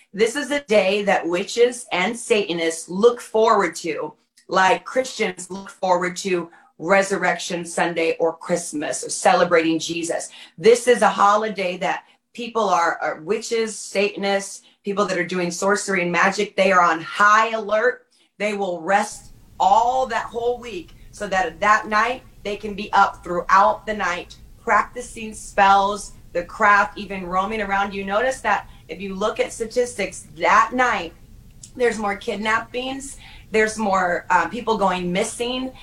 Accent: American